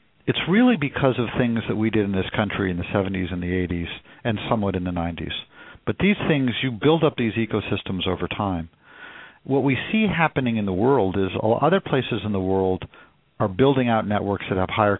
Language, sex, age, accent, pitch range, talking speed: English, male, 50-69, American, 95-120 Hz, 210 wpm